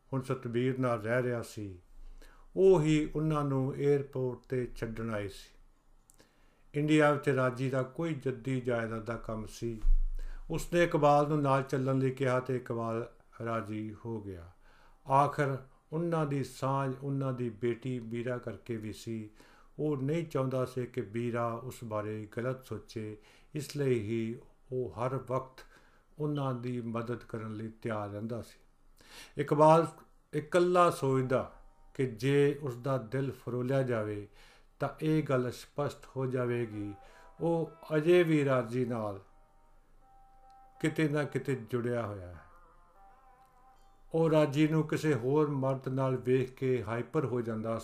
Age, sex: 50-69, male